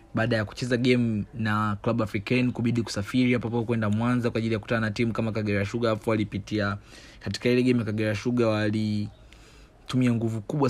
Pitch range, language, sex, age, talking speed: 105-125 Hz, Swahili, male, 30-49, 180 wpm